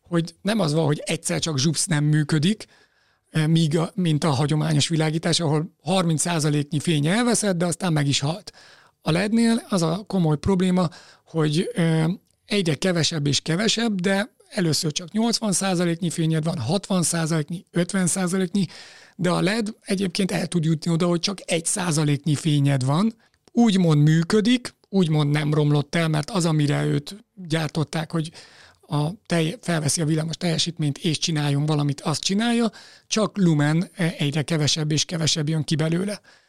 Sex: male